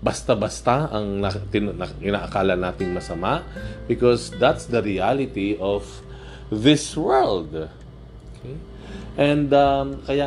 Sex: male